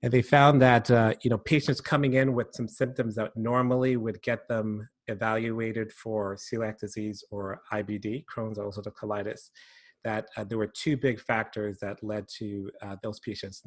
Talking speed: 175 wpm